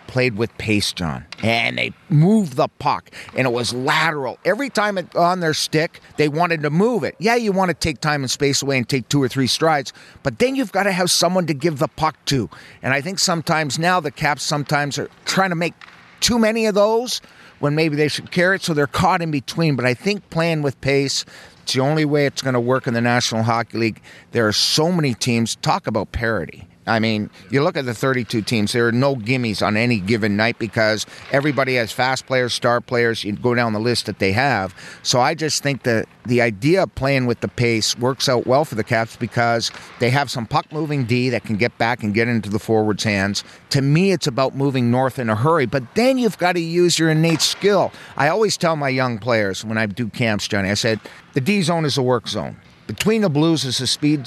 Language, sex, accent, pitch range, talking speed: English, male, American, 115-160 Hz, 235 wpm